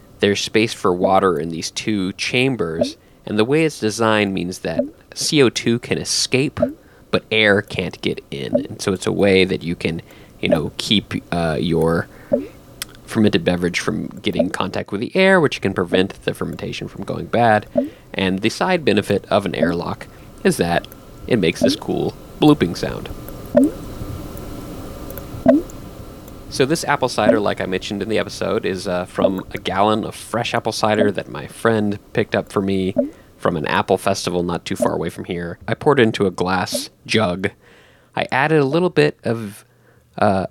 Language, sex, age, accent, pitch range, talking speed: English, male, 20-39, American, 95-140 Hz, 175 wpm